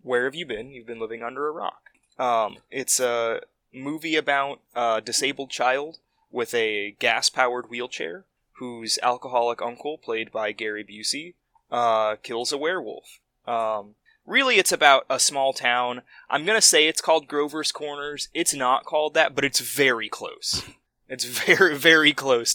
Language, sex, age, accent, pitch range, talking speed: English, male, 20-39, American, 115-140 Hz, 160 wpm